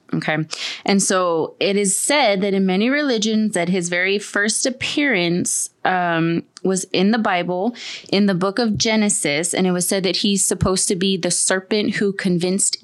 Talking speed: 180 wpm